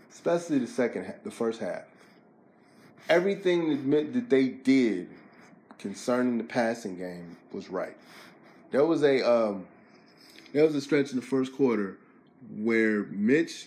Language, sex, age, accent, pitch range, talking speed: English, male, 20-39, American, 110-135 Hz, 135 wpm